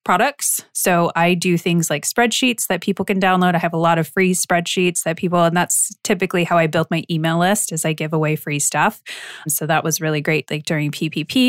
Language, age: English, 20-39